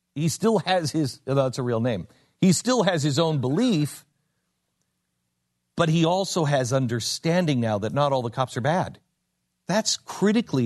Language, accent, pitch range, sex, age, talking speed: English, American, 110-155 Hz, male, 50-69, 165 wpm